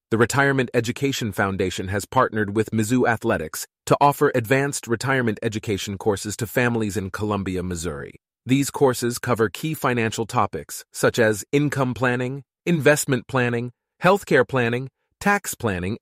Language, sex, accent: English, male, American